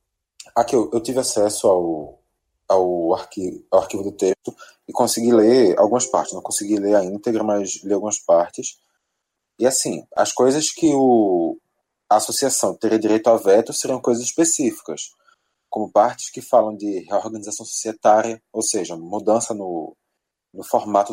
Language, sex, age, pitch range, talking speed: Portuguese, male, 20-39, 110-135 Hz, 155 wpm